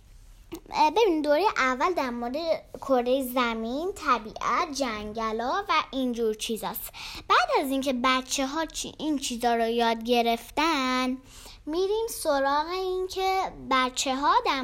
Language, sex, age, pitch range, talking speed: Persian, female, 10-29, 235-370 Hz, 130 wpm